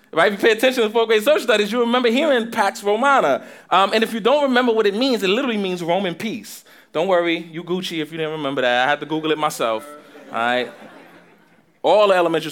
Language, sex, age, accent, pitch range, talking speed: English, male, 20-39, American, 160-250 Hz, 225 wpm